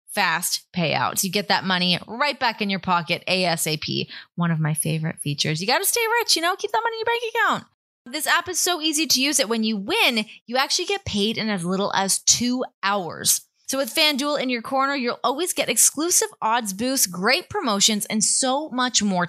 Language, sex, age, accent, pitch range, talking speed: English, female, 20-39, American, 190-270 Hz, 220 wpm